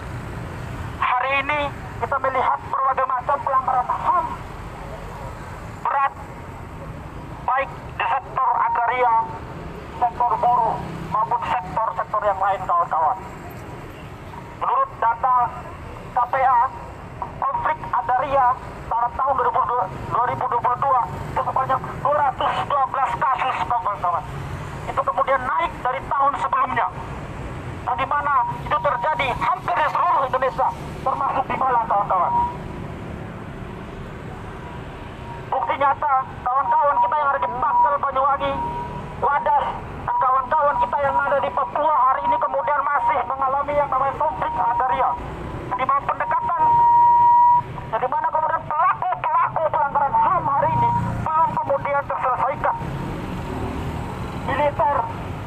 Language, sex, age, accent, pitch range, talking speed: Indonesian, male, 40-59, native, 245-310 Hz, 100 wpm